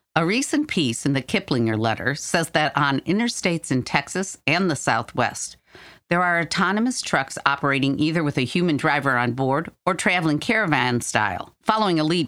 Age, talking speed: 50-69, 170 wpm